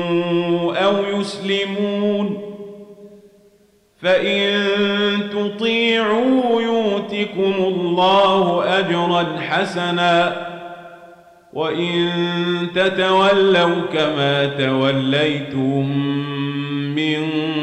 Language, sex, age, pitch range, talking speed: Arabic, male, 40-59, 155-190 Hz, 40 wpm